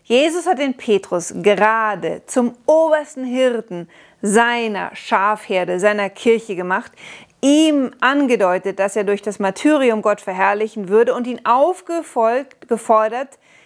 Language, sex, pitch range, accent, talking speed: German, female, 205-270 Hz, German, 115 wpm